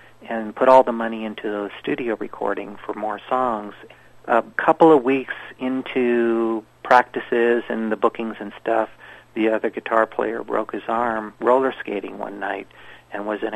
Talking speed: 165 wpm